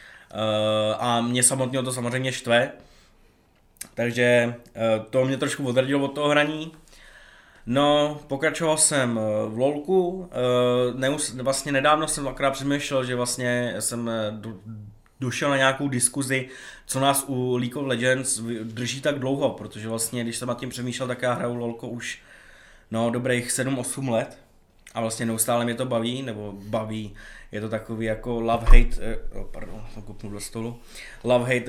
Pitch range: 110-130 Hz